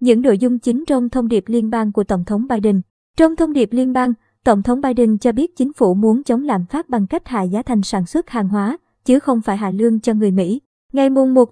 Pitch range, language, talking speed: 215-255 Hz, Vietnamese, 255 wpm